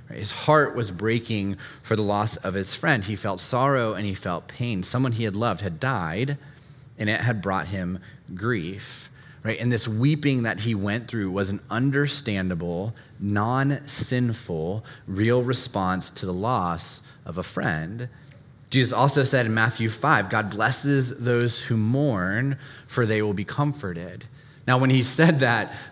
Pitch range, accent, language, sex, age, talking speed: 105-135 Hz, American, English, male, 30-49, 160 wpm